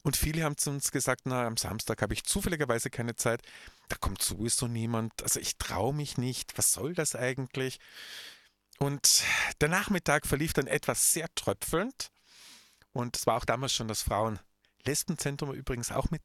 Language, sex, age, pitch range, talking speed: German, male, 50-69, 110-145 Hz, 170 wpm